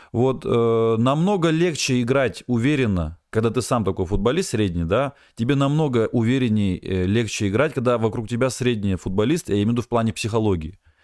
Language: Russian